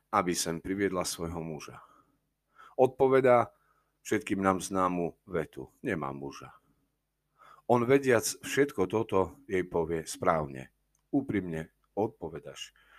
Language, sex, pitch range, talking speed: Slovak, male, 90-125 Hz, 95 wpm